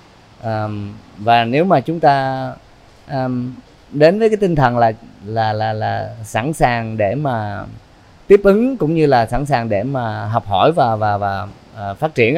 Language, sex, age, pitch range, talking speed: Vietnamese, male, 20-39, 105-140 Hz, 175 wpm